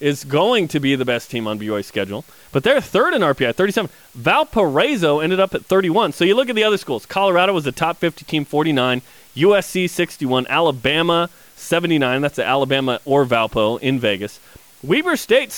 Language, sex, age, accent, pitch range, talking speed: English, male, 30-49, American, 130-175 Hz, 185 wpm